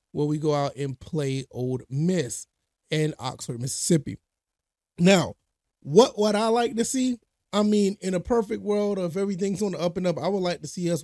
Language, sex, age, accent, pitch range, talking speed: English, male, 30-49, American, 140-180 Hz, 200 wpm